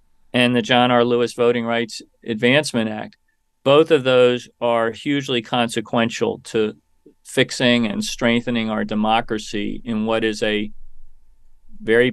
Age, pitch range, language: 40-59, 110-120 Hz, English